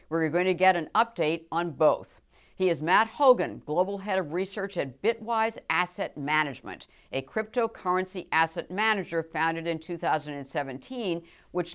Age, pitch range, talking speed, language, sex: 50-69, 155-195 Hz, 145 wpm, English, female